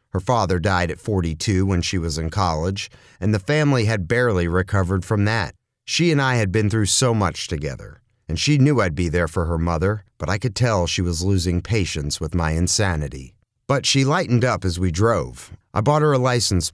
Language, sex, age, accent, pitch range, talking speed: English, male, 40-59, American, 90-115 Hz, 210 wpm